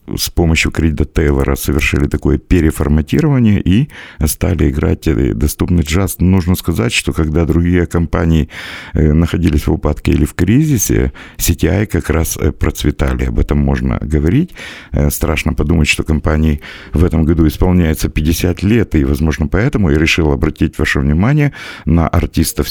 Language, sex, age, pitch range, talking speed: Russian, male, 50-69, 75-90 Hz, 135 wpm